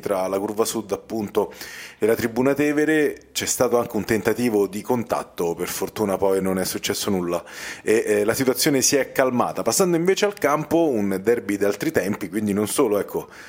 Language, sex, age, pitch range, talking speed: Italian, male, 30-49, 100-125 Hz, 190 wpm